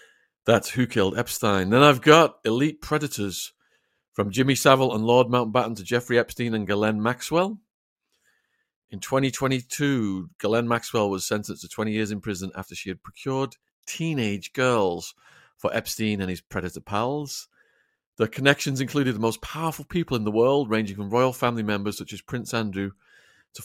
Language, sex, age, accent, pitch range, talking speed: English, male, 40-59, British, 105-135 Hz, 160 wpm